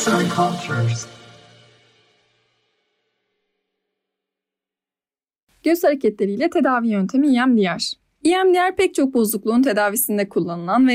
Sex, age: female, 30-49